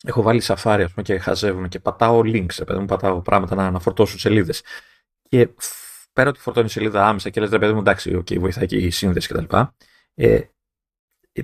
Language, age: Greek, 30-49